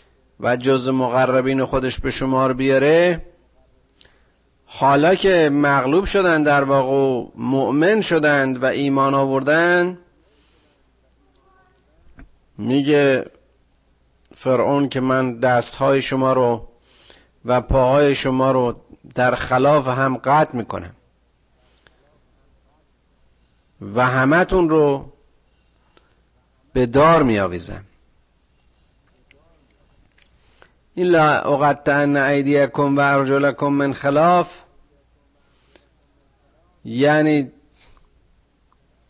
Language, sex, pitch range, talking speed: Persian, male, 105-140 Hz, 75 wpm